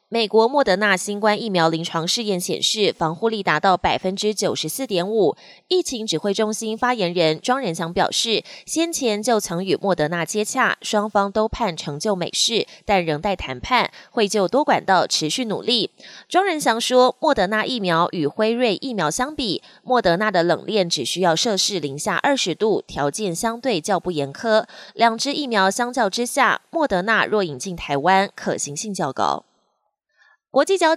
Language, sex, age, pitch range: Chinese, female, 20-39, 175-240 Hz